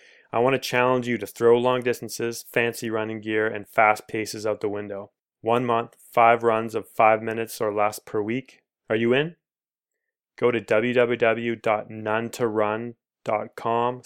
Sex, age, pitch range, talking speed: male, 20-39, 105-120 Hz, 150 wpm